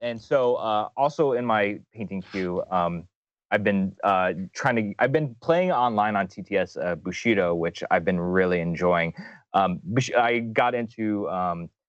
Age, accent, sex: 30-49, American, male